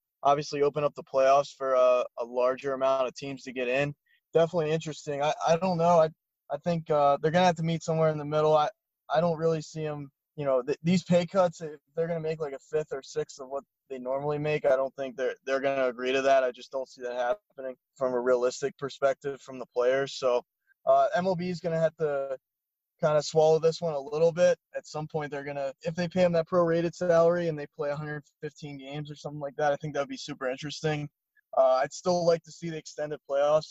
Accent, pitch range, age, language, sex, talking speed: American, 135-160 Hz, 20-39, English, male, 240 wpm